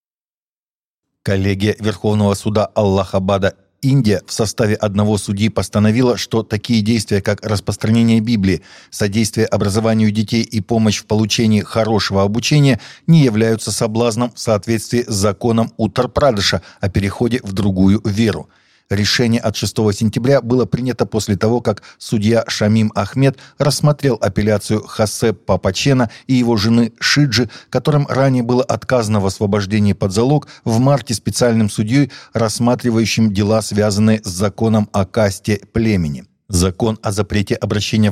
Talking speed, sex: 130 wpm, male